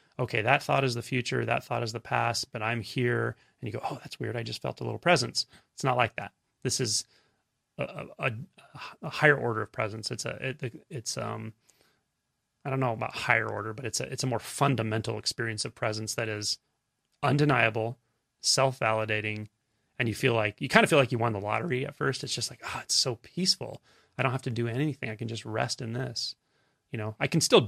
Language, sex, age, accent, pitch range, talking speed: English, male, 30-49, American, 115-135 Hz, 225 wpm